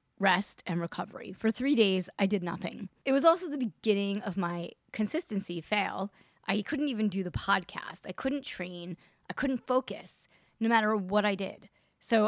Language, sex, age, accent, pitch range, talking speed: English, female, 30-49, American, 180-225 Hz, 175 wpm